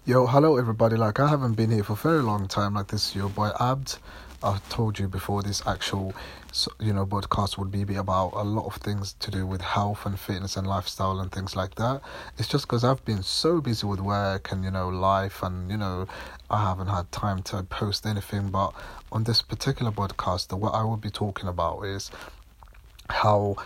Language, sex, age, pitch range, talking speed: English, male, 30-49, 95-110 Hz, 215 wpm